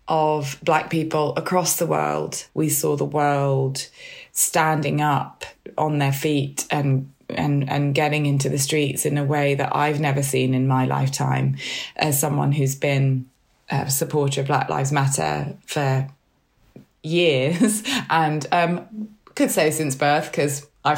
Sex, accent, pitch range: female, British, 130-150 Hz